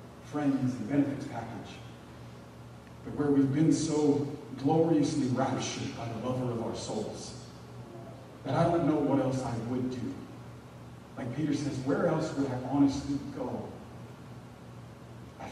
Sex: male